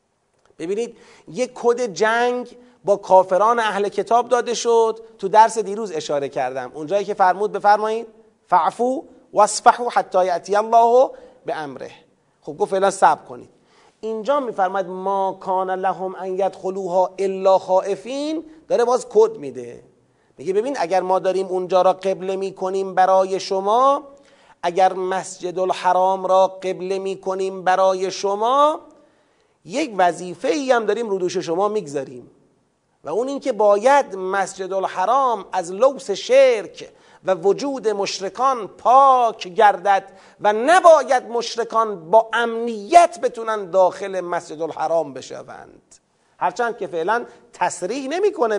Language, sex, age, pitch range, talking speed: Persian, male, 40-59, 185-235 Hz, 125 wpm